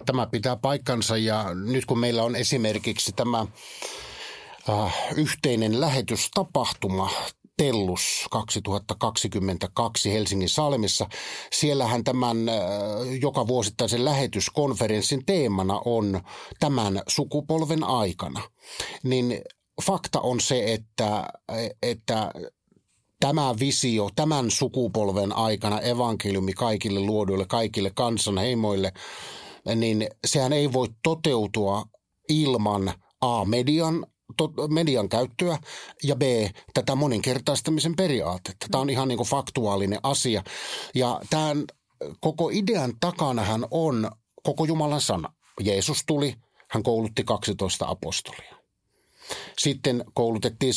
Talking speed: 100 wpm